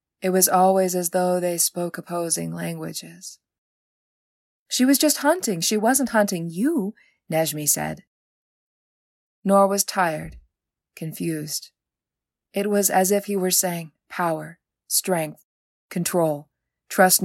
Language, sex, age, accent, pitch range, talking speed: English, female, 20-39, American, 155-185 Hz, 120 wpm